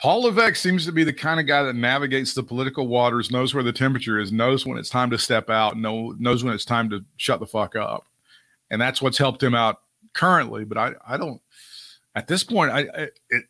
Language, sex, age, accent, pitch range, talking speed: English, male, 40-59, American, 120-135 Hz, 240 wpm